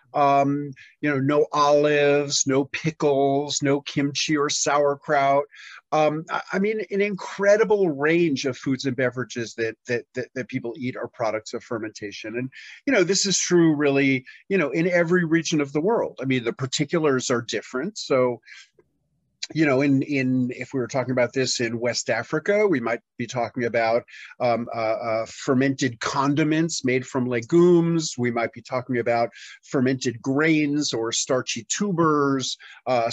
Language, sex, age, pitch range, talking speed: English, male, 40-59, 125-155 Hz, 165 wpm